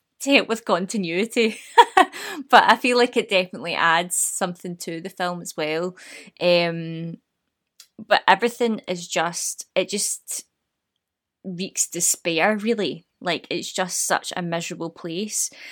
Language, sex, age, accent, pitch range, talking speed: English, female, 20-39, British, 170-215 Hz, 125 wpm